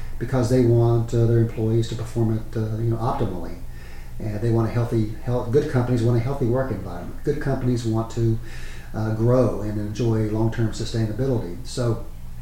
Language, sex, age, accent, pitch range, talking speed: English, male, 40-59, American, 105-125 Hz, 185 wpm